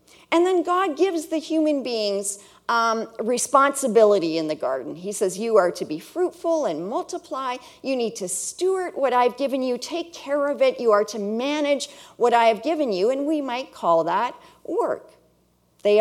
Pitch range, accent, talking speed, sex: 210-315 Hz, American, 185 wpm, female